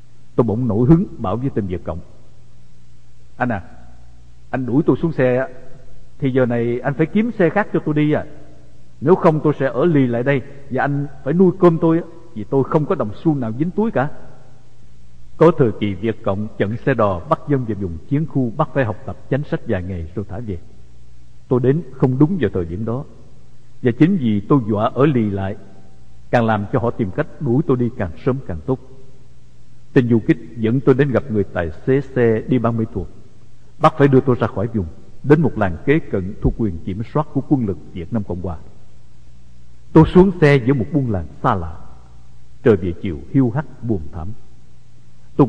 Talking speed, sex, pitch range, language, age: 210 wpm, male, 100-140 Hz, English, 60-79